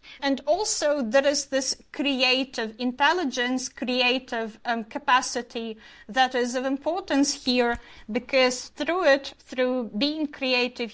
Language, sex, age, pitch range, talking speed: English, female, 30-49, 235-270 Hz, 115 wpm